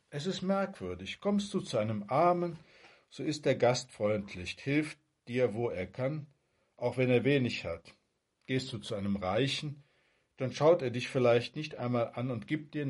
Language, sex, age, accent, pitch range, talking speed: German, male, 60-79, German, 100-145 Hz, 175 wpm